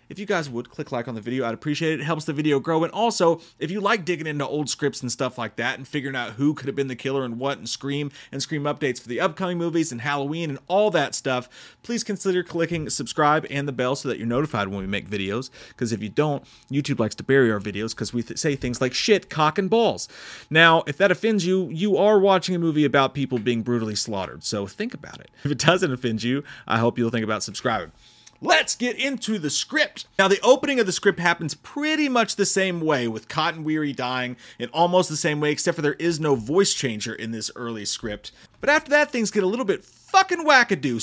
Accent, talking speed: American, 245 wpm